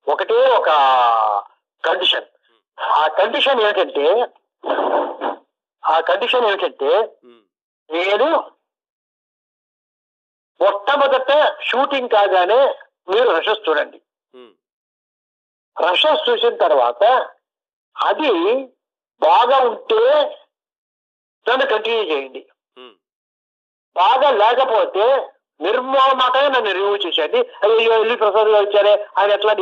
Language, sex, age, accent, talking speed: Telugu, male, 50-69, native, 80 wpm